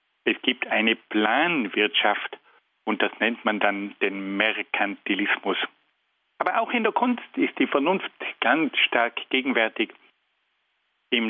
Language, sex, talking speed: German, male, 120 wpm